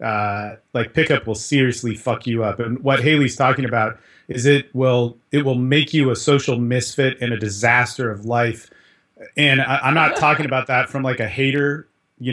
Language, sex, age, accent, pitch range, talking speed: English, male, 30-49, American, 120-145 Hz, 195 wpm